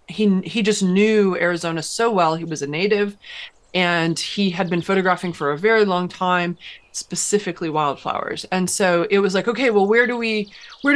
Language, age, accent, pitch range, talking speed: English, 30-49, American, 180-235 Hz, 185 wpm